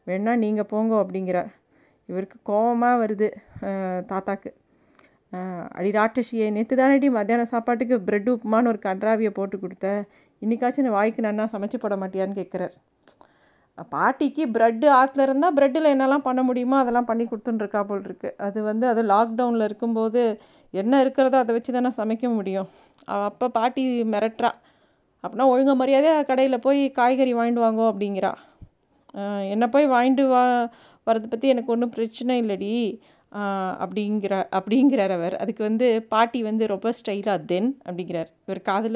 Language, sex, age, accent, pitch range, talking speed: Tamil, female, 30-49, native, 205-250 Hz, 135 wpm